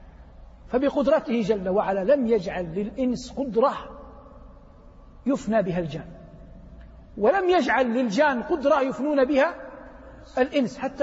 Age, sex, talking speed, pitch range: 50-69, male, 100 wpm, 235-325 Hz